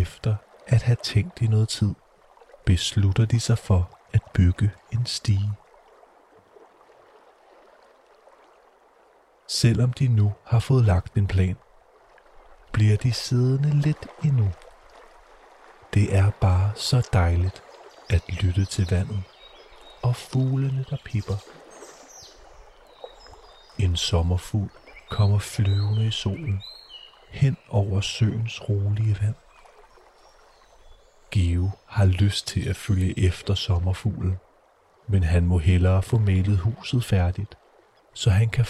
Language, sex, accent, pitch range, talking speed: Danish, male, native, 95-115 Hz, 110 wpm